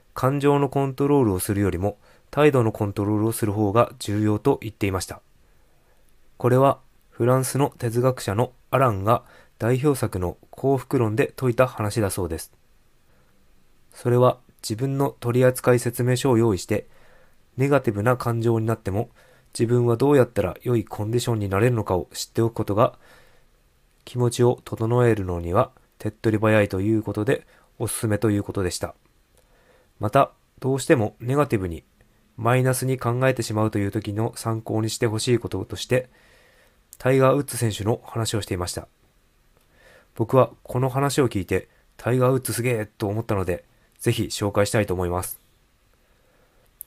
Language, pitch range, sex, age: Japanese, 105-125 Hz, male, 20-39